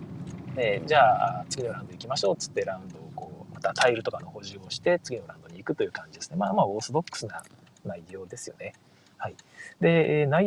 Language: Japanese